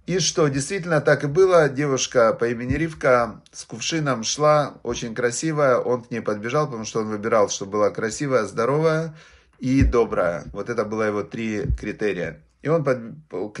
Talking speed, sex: 170 wpm, male